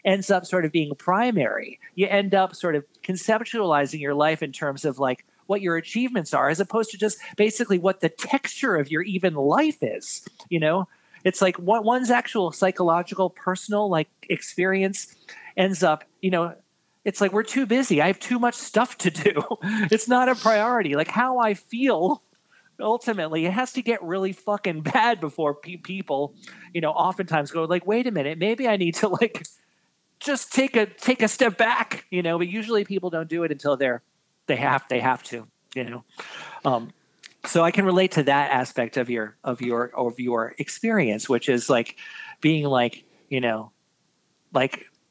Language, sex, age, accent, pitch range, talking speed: English, male, 40-59, American, 145-215 Hz, 185 wpm